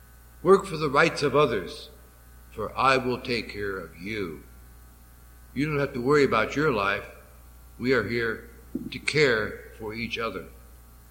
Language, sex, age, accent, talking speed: English, male, 60-79, American, 155 wpm